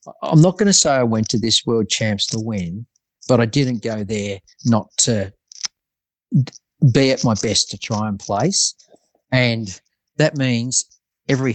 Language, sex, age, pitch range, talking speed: English, male, 40-59, 105-125 Hz, 165 wpm